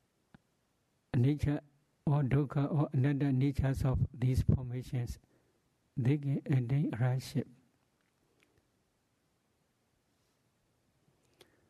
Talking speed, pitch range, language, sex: 70 wpm, 125-145 Hz, English, male